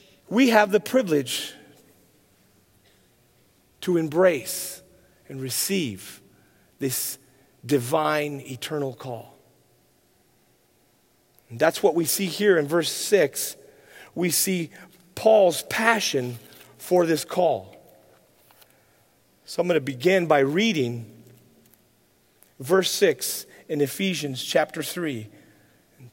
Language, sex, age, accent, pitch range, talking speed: English, male, 40-59, American, 130-195 Hz, 95 wpm